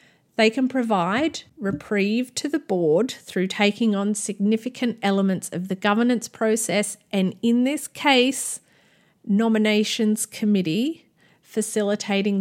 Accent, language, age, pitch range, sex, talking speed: Australian, English, 40-59, 190-225 Hz, female, 110 wpm